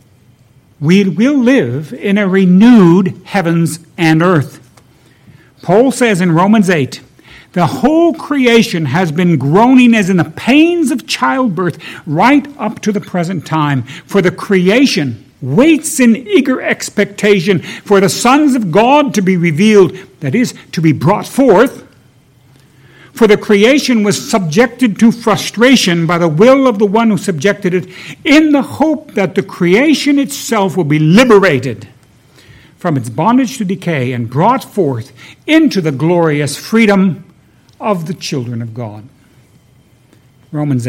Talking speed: 140 wpm